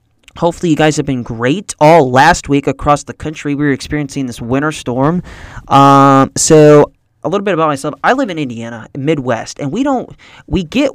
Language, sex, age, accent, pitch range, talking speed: English, male, 20-39, American, 125-155 Hz, 195 wpm